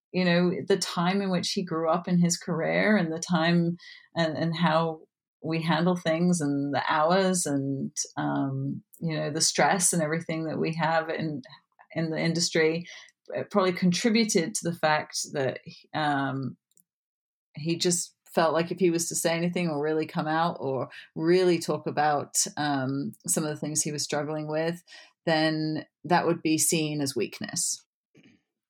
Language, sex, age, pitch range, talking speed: English, female, 30-49, 150-180 Hz, 170 wpm